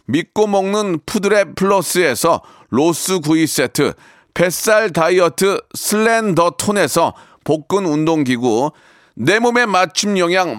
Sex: male